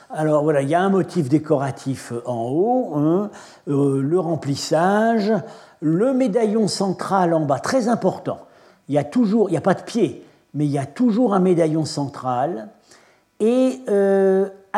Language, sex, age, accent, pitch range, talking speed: French, male, 60-79, French, 145-195 Hz, 155 wpm